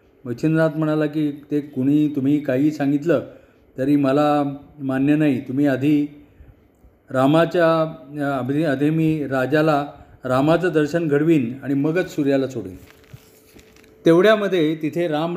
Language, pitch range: Marathi, 135-165 Hz